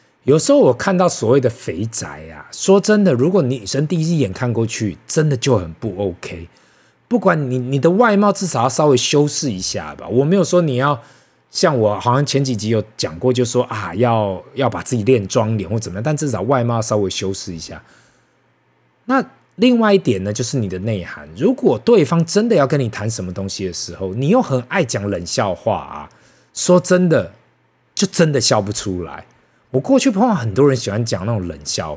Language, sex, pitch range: Chinese, male, 100-145 Hz